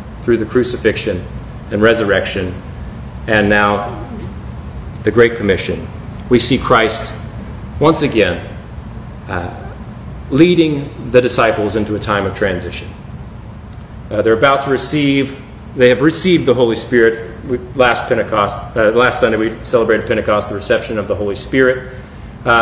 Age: 40-59